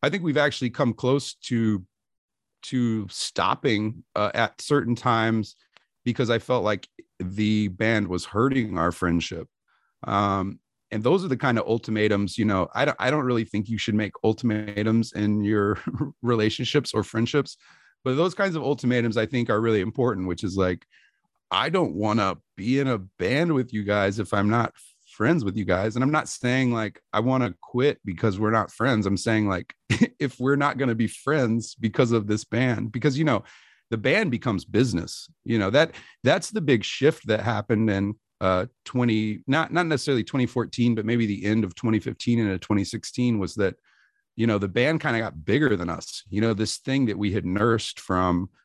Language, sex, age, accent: English, male, 30-49, American